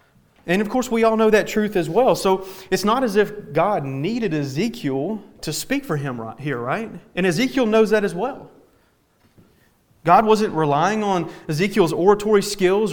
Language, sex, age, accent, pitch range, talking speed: English, male, 30-49, American, 160-215 Hz, 175 wpm